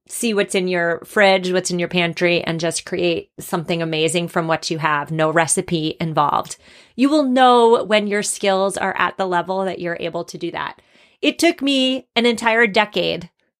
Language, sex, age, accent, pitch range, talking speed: English, female, 30-49, American, 175-230 Hz, 190 wpm